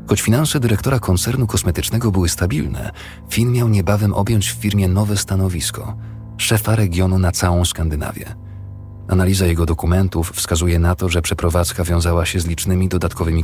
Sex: male